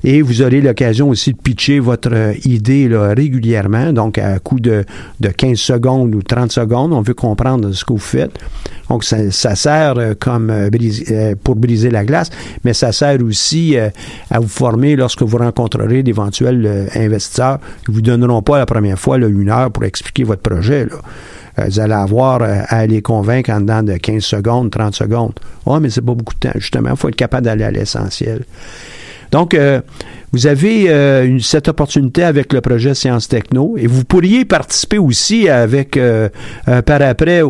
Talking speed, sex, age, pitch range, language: 190 wpm, male, 50-69, 110-135 Hz, French